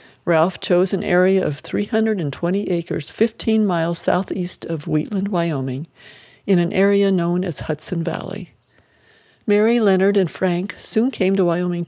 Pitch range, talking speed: 165-195 Hz, 140 wpm